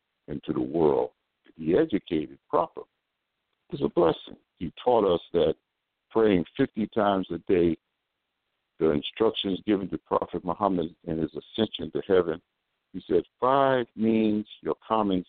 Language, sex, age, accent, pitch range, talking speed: English, male, 60-79, American, 85-115 Hz, 140 wpm